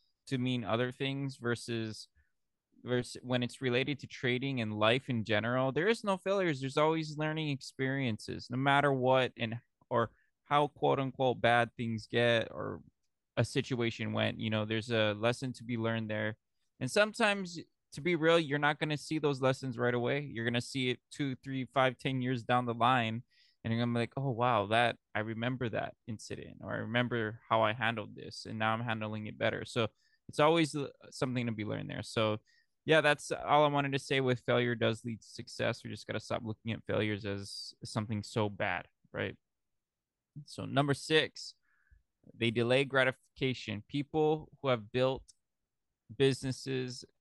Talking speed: 180 wpm